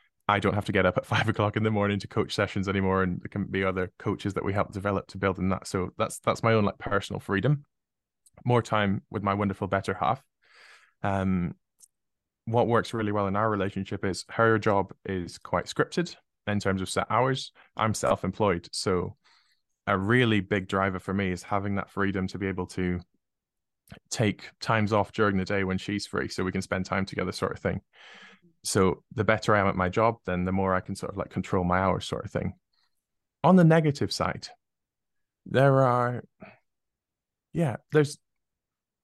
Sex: male